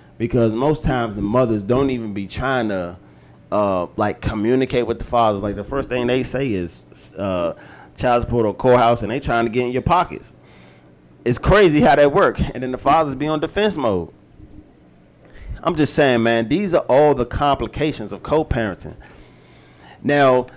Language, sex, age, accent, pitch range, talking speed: English, male, 30-49, American, 105-130 Hz, 180 wpm